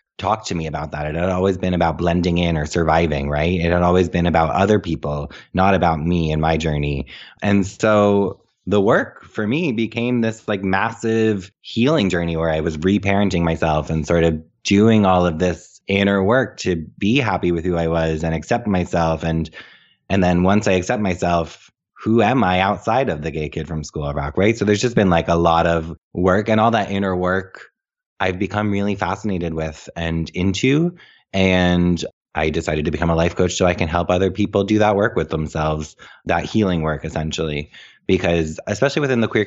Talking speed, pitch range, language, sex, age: 200 wpm, 80-100 Hz, English, male, 20-39